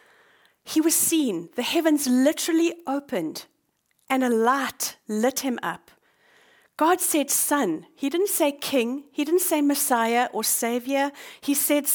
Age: 40-59